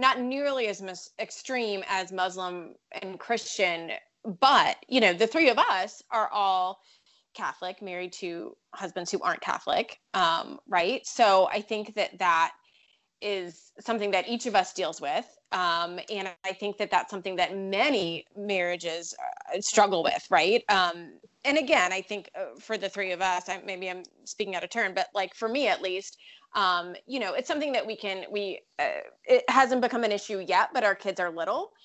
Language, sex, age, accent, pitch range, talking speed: English, female, 20-39, American, 185-230 Hz, 180 wpm